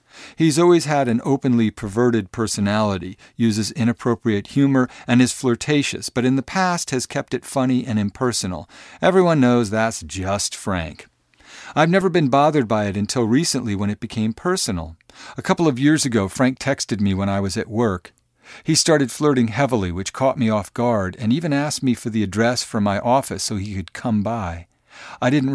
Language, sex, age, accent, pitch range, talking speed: English, male, 50-69, American, 105-130 Hz, 185 wpm